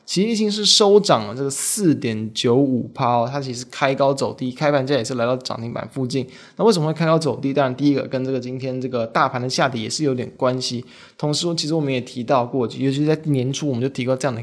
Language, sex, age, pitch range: Chinese, male, 20-39, 130-155 Hz